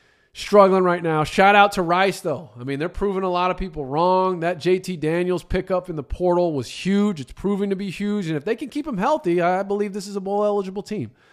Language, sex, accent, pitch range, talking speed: English, male, American, 160-205 Hz, 245 wpm